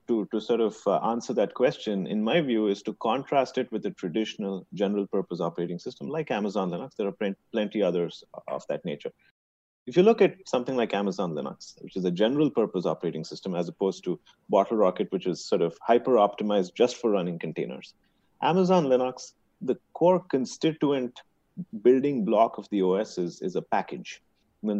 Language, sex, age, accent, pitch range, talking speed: English, male, 30-49, Indian, 95-130 Hz, 185 wpm